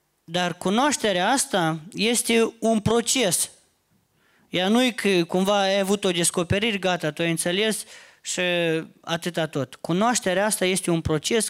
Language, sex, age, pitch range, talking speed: Romanian, male, 20-39, 160-215 Hz, 135 wpm